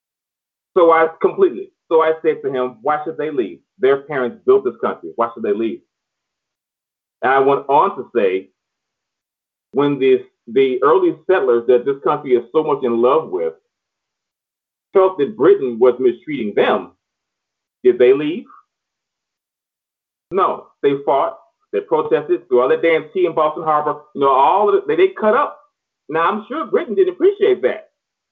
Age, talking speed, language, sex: 30-49, 165 wpm, English, male